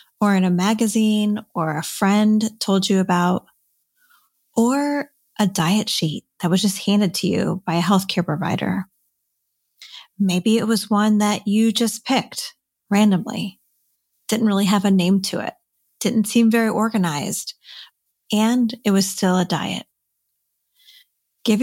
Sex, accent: female, American